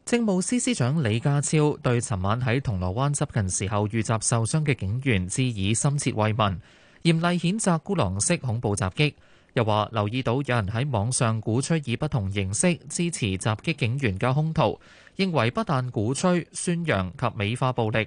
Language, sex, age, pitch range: Chinese, male, 20-39, 110-150 Hz